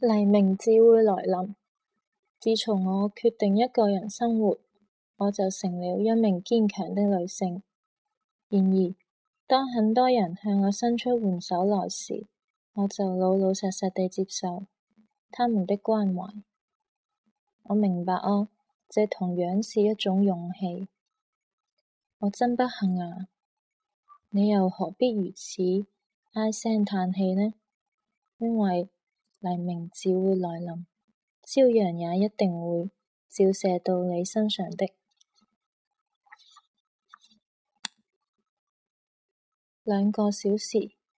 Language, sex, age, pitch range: Chinese, female, 20-39, 190-235 Hz